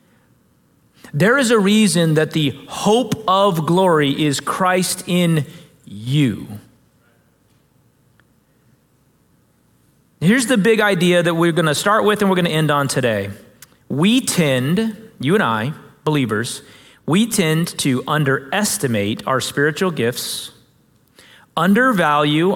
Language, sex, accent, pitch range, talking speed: English, male, American, 145-210 Hz, 115 wpm